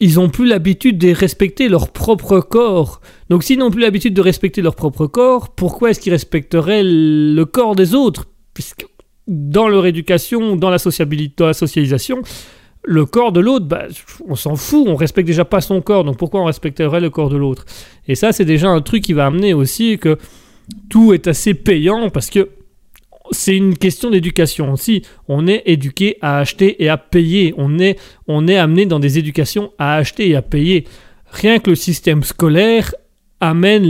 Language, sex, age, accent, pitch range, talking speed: French, male, 30-49, French, 155-195 Hz, 195 wpm